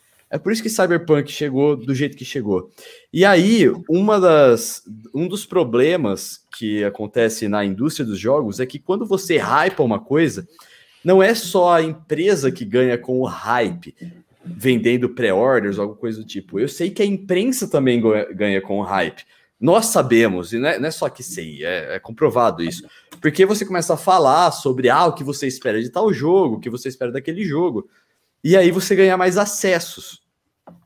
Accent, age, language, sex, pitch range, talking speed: Brazilian, 20-39, Portuguese, male, 125-185 Hz, 185 wpm